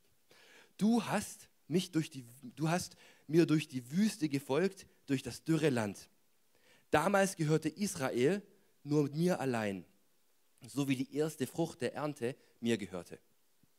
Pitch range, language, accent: 115-175 Hz, German, German